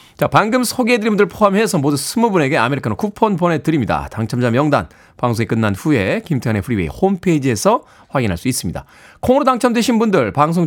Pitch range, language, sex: 110-165 Hz, Korean, male